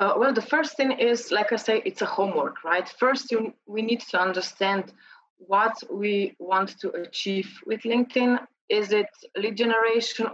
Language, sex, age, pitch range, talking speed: English, female, 30-49, 195-240 Hz, 170 wpm